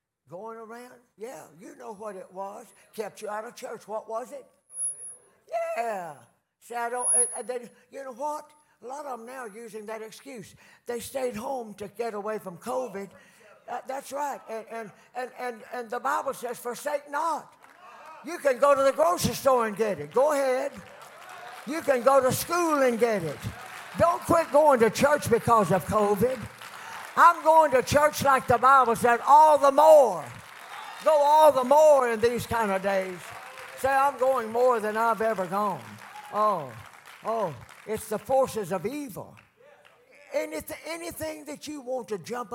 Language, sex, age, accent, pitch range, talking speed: English, male, 60-79, American, 210-275 Hz, 175 wpm